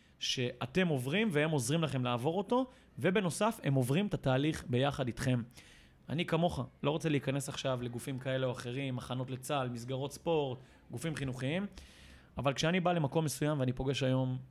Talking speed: 155 wpm